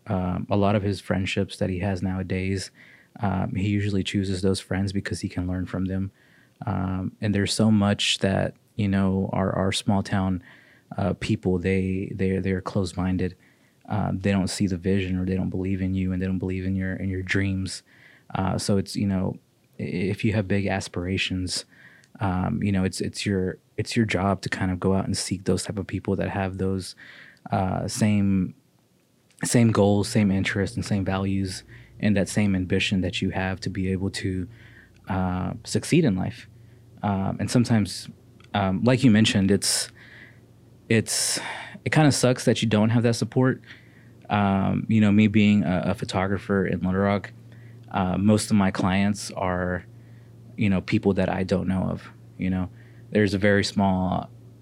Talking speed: 185 wpm